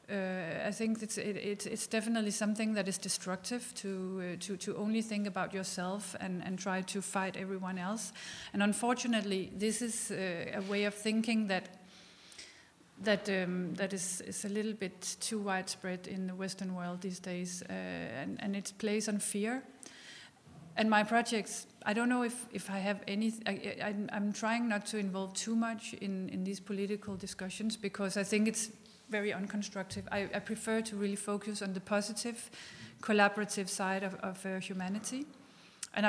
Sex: female